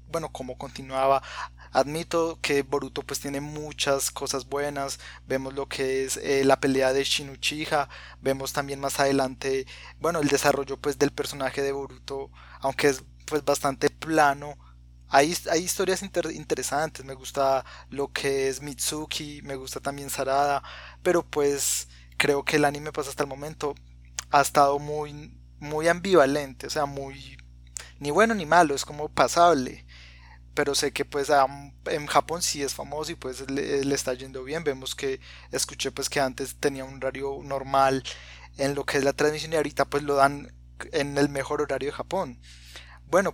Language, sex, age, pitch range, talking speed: Spanish, male, 20-39, 130-150 Hz, 170 wpm